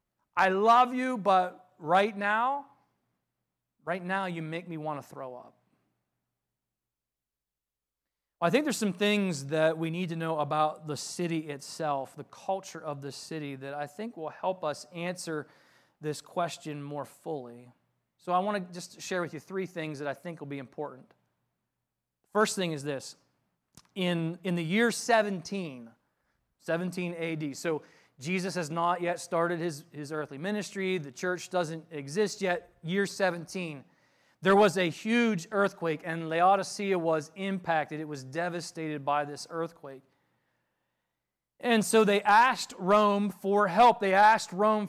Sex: male